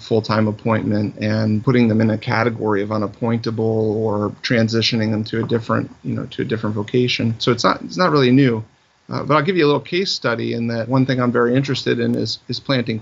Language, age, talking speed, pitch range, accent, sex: English, 30-49, 225 wpm, 115-130 Hz, American, male